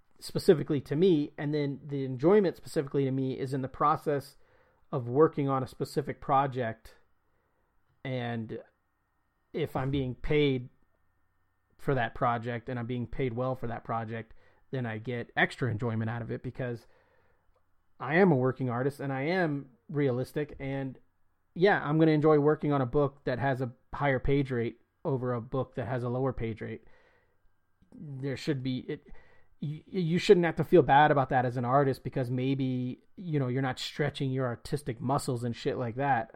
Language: English